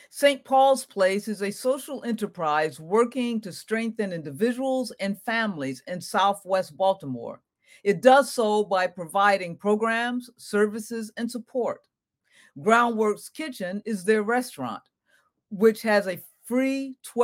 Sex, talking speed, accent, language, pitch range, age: female, 120 wpm, American, English, 175-235 Hz, 50-69